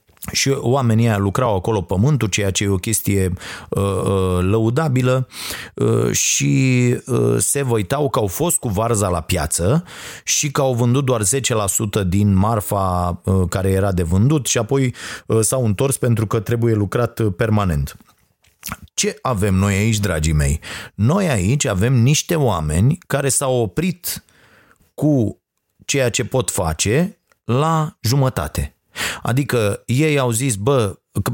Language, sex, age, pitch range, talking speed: Romanian, male, 30-49, 95-130 Hz, 145 wpm